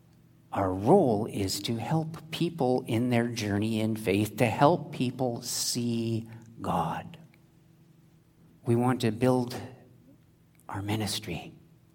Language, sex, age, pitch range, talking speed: English, male, 50-69, 110-150 Hz, 110 wpm